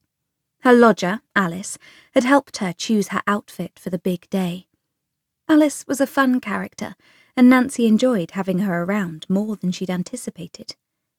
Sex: female